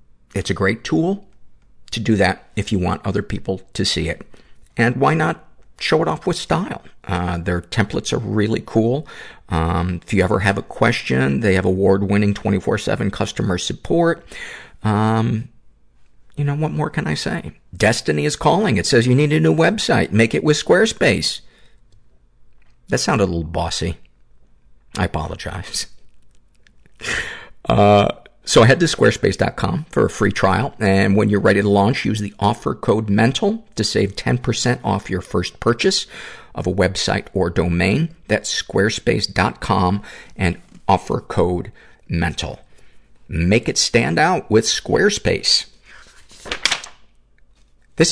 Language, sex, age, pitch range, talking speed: English, male, 50-69, 85-110 Hz, 145 wpm